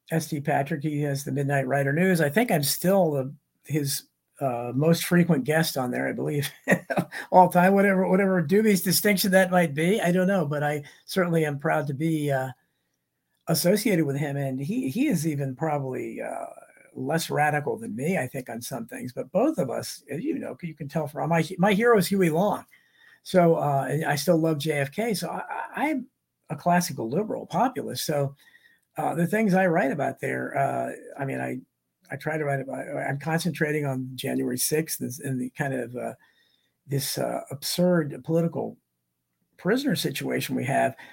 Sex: male